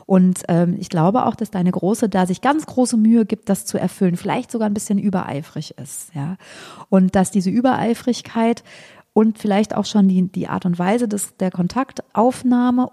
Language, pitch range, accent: German, 185-220 Hz, German